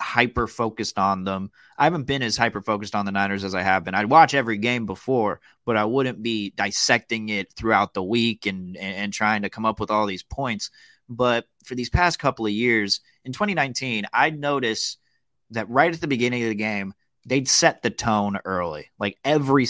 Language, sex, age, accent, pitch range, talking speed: English, male, 30-49, American, 105-135 Hz, 200 wpm